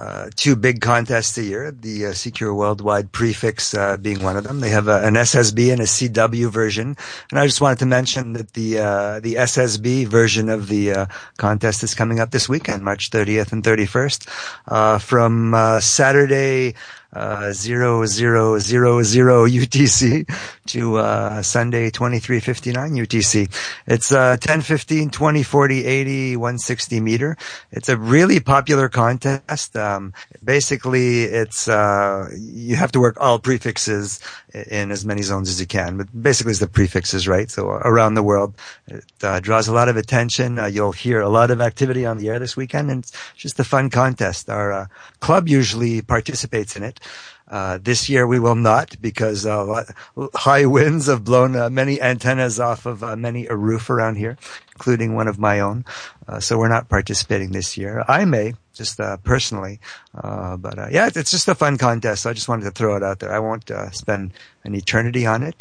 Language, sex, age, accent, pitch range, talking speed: English, male, 50-69, American, 105-130 Hz, 190 wpm